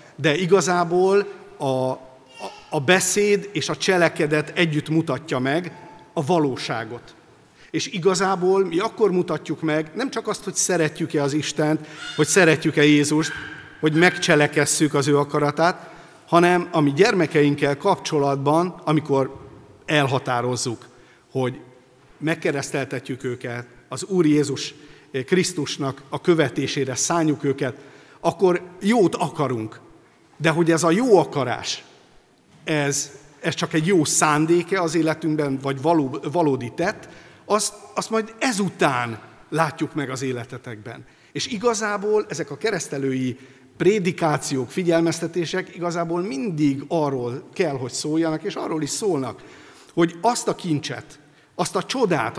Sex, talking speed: male, 120 wpm